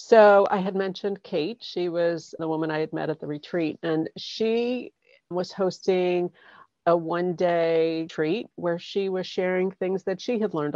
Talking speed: 175 wpm